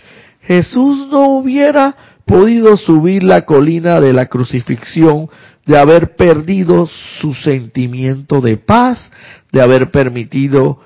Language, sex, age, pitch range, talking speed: Spanish, male, 50-69, 125-160 Hz, 110 wpm